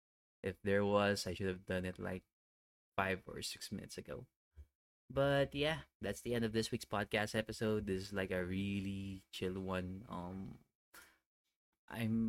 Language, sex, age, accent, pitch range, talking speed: English, male, 20-39, Filipino, 95-105 Hz, 160 wpm